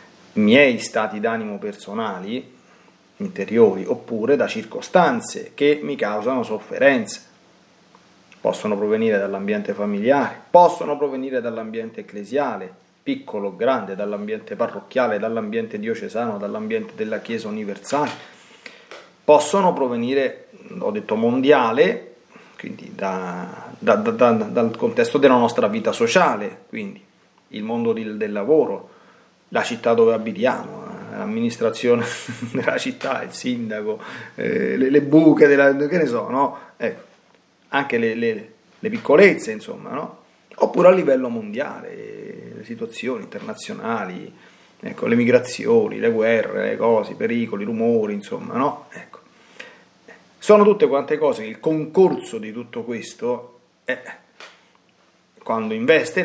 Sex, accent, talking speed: male, native, 115 wpm